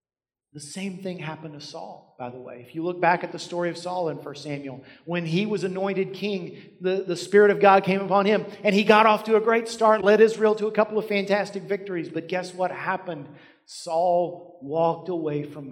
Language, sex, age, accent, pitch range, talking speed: English, male, 40-59, American, 165-215 Hz, 220 wpm